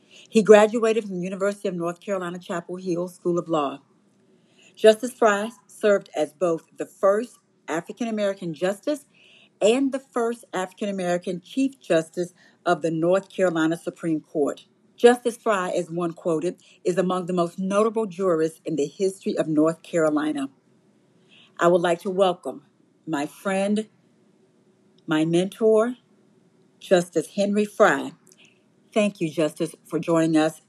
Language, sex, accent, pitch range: English, female, American, 160-195 Hz